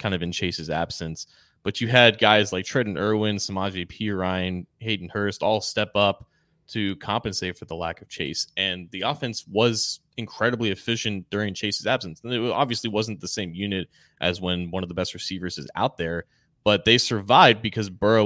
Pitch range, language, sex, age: 90-110 Hz, English, male, 20-39